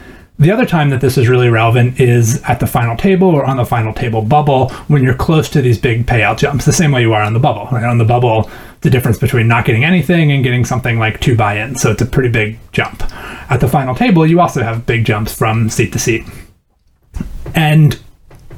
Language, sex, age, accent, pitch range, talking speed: English, male, 30-49, American, 115-145 Hz, 225 wpm